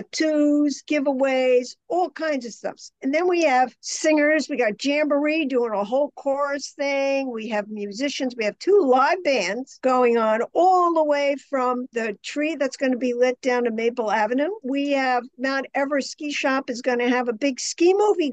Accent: American